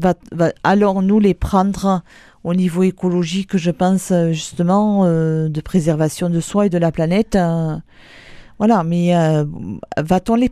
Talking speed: 145 wpm